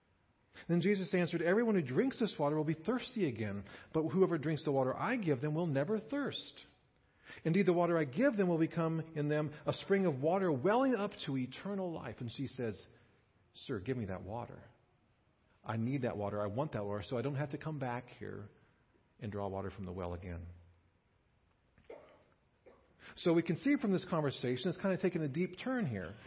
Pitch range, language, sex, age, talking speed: 110-175 Hz, English, male, 40-59, 200 wpm